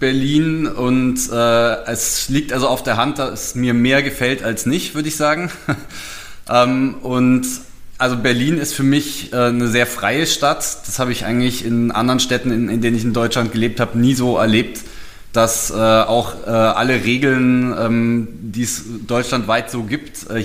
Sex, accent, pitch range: male, German, 115-135 Hz